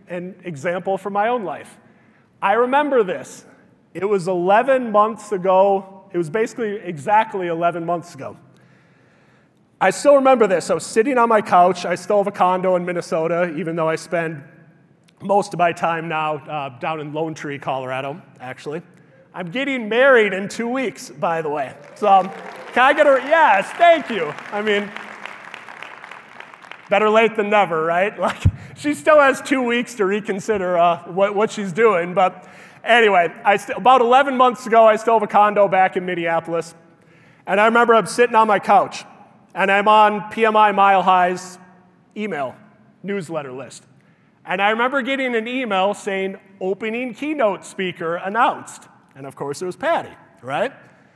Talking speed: 165 wpm